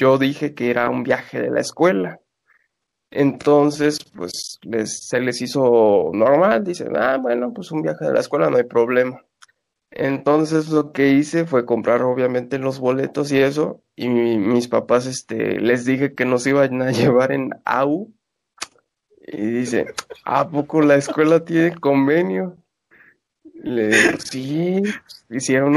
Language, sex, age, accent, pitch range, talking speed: Spanish, male, 20-39, Mexican, 125-165 Hz, 150 wpm